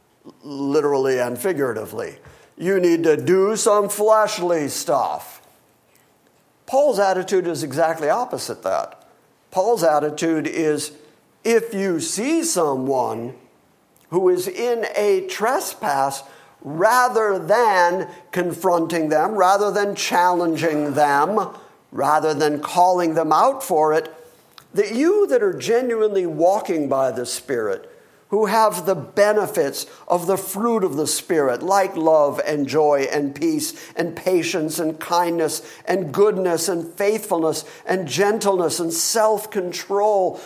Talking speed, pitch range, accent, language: 120 wpm, 160-215 Hz, American, English